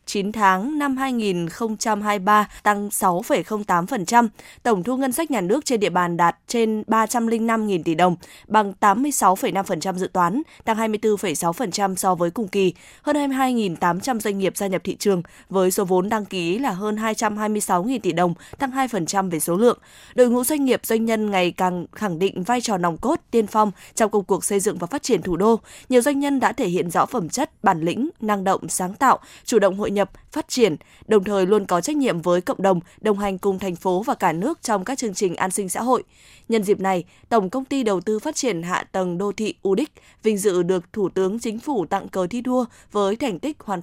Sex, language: female, Vietnamese